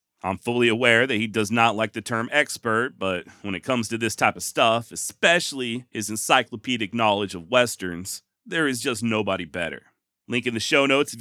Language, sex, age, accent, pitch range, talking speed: English, male, 40-59, American, 115-140 Hz, 200 wpm